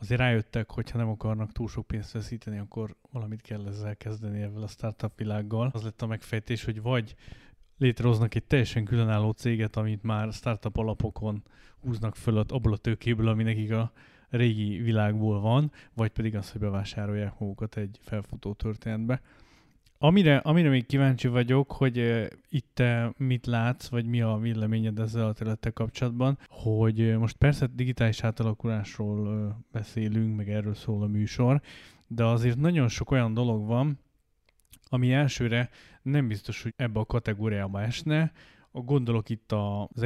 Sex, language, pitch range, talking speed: male, Hungarian, 110-120 Hz, 150 wpm